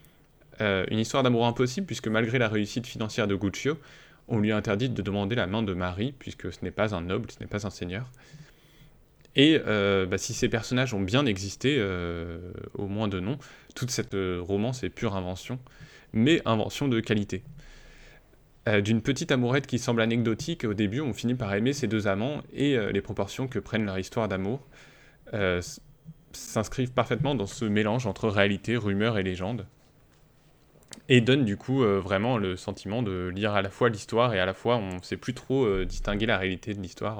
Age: 20-39